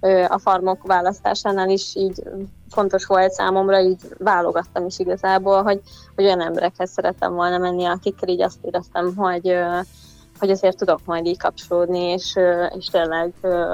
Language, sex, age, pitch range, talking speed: Hungarian, female, 20-39, 185-205 Hz, 145 wpm